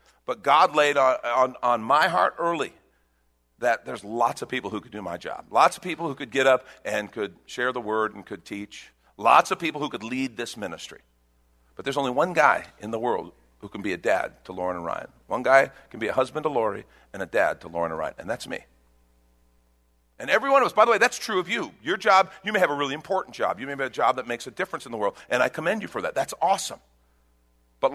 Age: 50-69